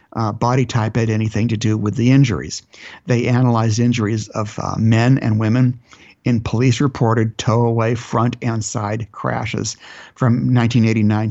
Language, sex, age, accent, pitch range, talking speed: English, male, 60-79, American, 110-125 Hz, 145 wpm